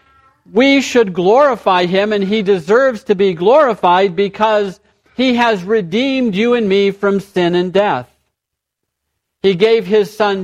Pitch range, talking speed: 180-220 Hz, 145 wpm